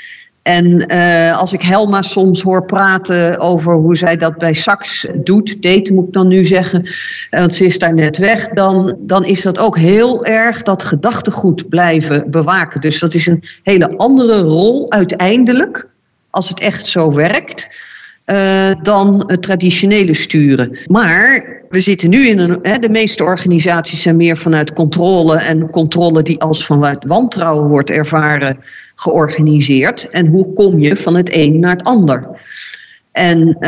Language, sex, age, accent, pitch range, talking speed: Dutch, female, 50-69, Dutch, 165-205 Hz, 160 wpm